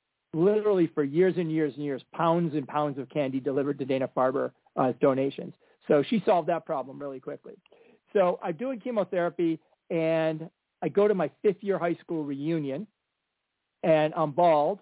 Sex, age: male, 40-59